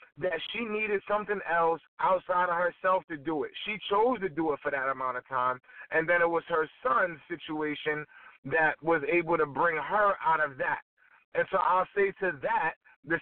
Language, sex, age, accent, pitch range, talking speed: English, male, 30-49, American, 170-270 Hz, 200 wpm